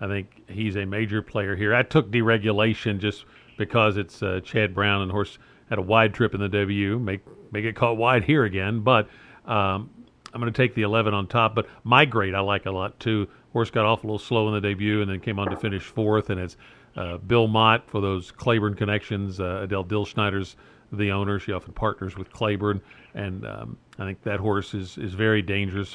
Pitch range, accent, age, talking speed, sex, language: 100-120 Hz, American, 50-69, 215 wpm, male, English